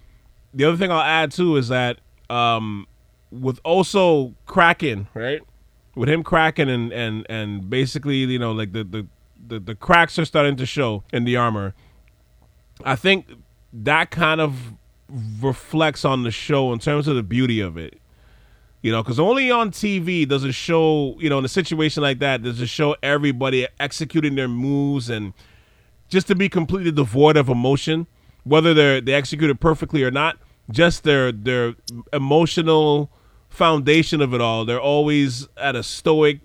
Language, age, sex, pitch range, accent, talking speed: English, 30-49, male, 120-155 Hz, American, 170 wpm